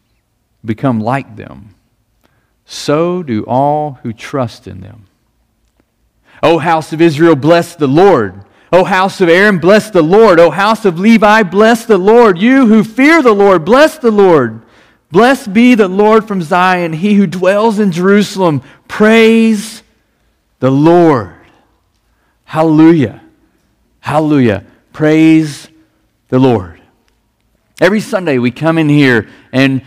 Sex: male